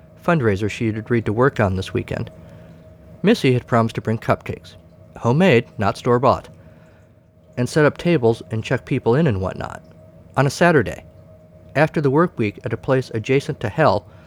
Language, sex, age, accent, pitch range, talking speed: English, male, 50-69, American, 90-130 Hz, 175 wpm